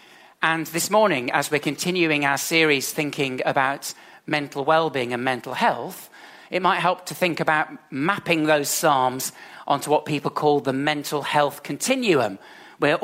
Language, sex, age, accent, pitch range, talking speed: English, male, 40-59, British, 140-165 Hz, 150 wpm